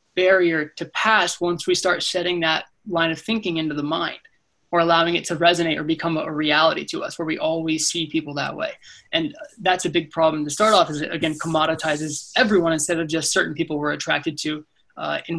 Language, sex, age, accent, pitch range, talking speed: English, male, 20-39, American, 160-195 Hz, 215 wpm